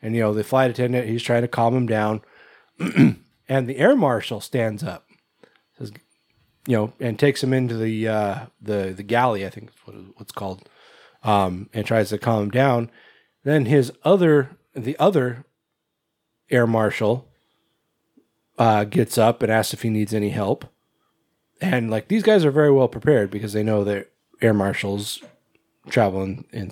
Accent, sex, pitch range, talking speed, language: American, male, 100-130 Hz, 170 wpm, English